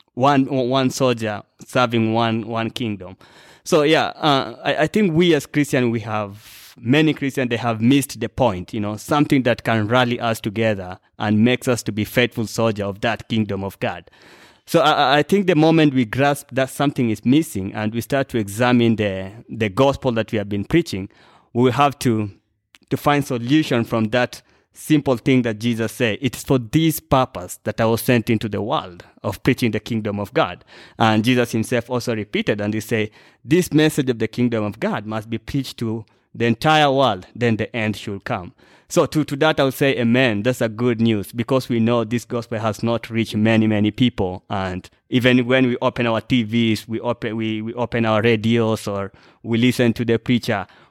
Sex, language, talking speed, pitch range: male, English, 200 wpm, 110-130 Hz